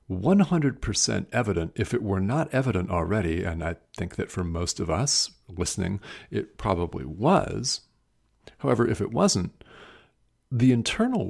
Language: English